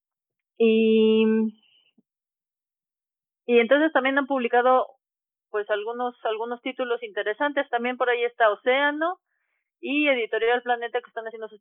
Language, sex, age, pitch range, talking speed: Spanish, female, 30-49, 200-250 Hz, 120 wpm